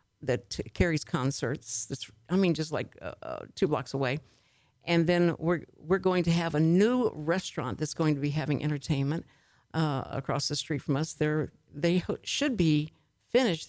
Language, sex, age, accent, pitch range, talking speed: English, female, 60-79, American, 150-185 Hz, 170 wpm